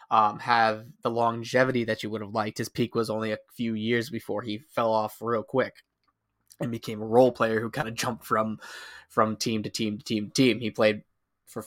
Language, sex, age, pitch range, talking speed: English, male, 20-39, 110-130 Hz, 220 wpm